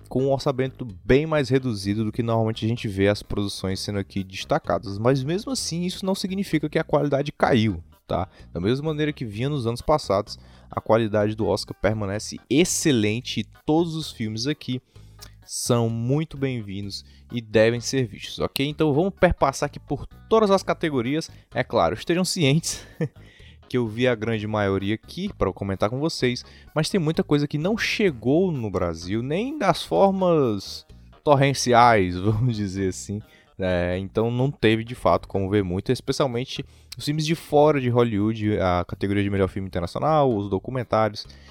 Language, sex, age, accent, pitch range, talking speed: Portuguese, male, 20-39, Brazilian, 100-140 Hz, 170 wpm